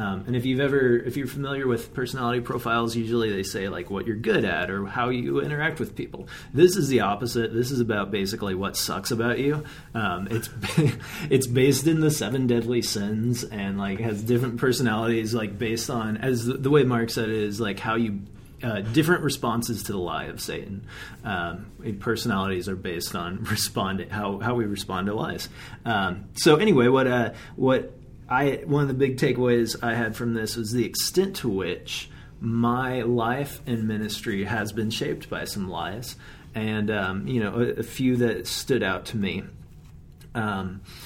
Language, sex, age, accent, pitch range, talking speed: English, male, 30-49, American, 105-125 Hz, 185 wpm